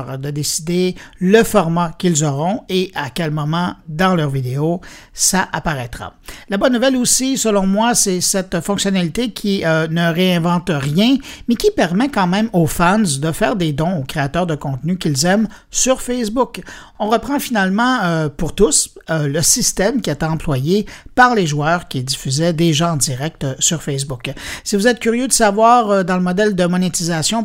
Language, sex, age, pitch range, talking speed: French, male, 60-79, 160-215 Hz, 180 wpm